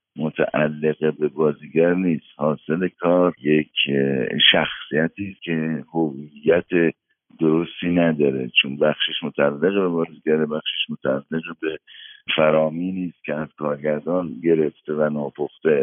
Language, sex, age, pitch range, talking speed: Persian, male, 60-79, 75-100 Hz, 105 wpm